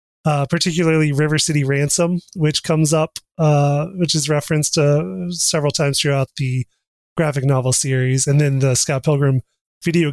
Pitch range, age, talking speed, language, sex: 135-155 Hz, 30-49, 155 wpm, English, male